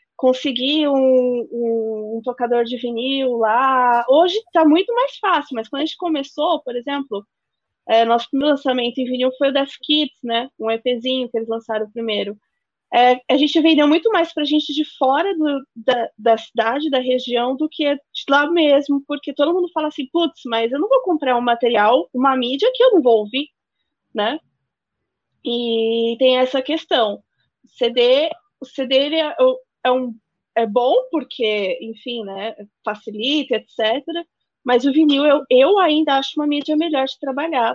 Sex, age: female, 20-39